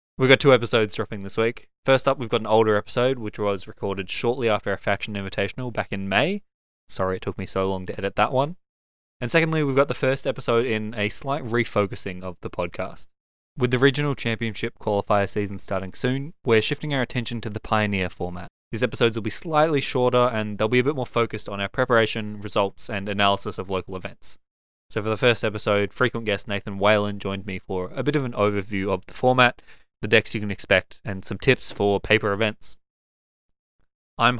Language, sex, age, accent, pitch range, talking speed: English, male, 20-39, Australian, 100-125 Hz, 210 wpm